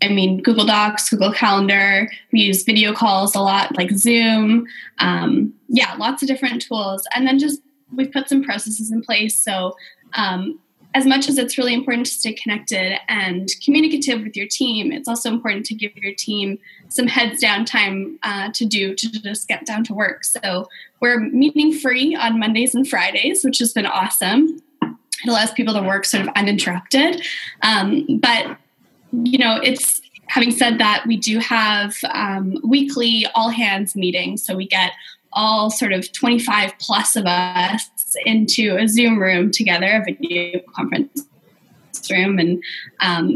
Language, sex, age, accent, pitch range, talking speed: English, female, 10-29, American, 200-255 Hz, 170 wpm